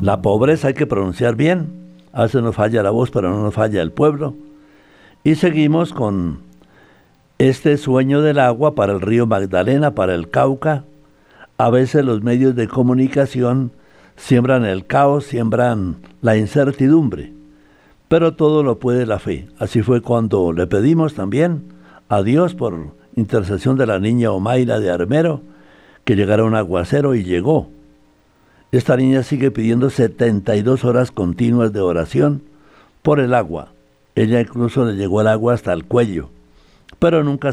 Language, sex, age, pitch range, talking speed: Spanish, male, 60-79, 100-145 Hz, 150 wpm